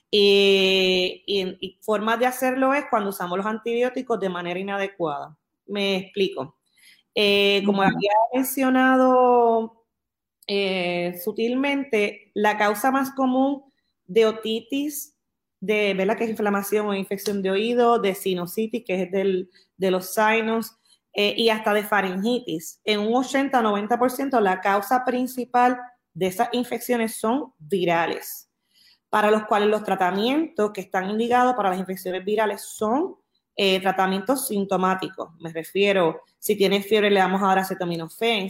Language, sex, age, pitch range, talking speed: Spanish, female, 30-49, 190-235 Hz, 130 wpm